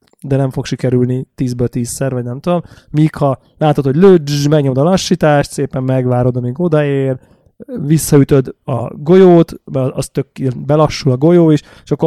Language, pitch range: Hungarian, 125-150 Hz